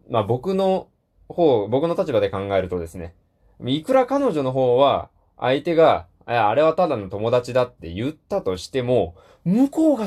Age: 20-39